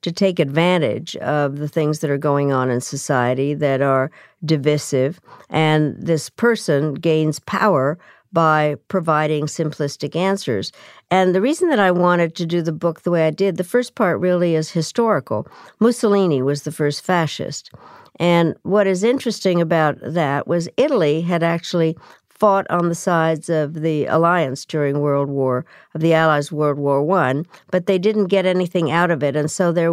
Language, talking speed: English, 170 wpm